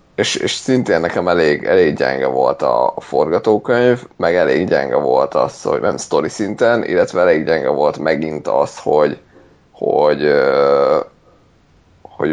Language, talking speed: Hungarian, 135 wpm